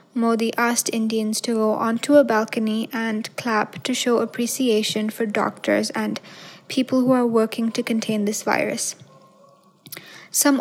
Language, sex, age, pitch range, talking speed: English, female, 10-29, 215-250 Hz, 140 wpm